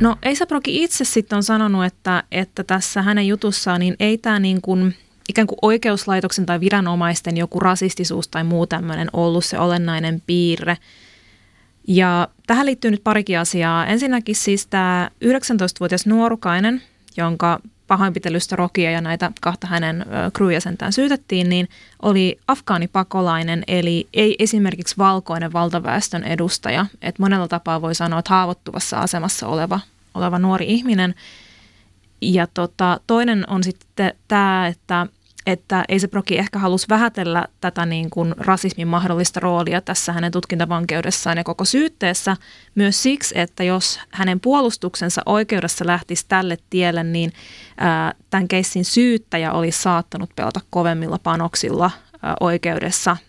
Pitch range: 170-200 Hz